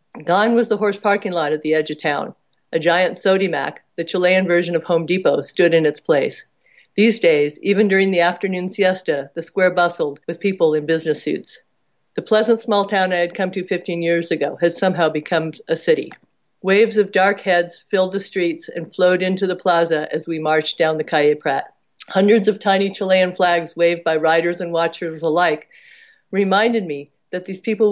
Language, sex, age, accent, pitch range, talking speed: English, female, 50-69, American, 165-195 Hz, 195 wpm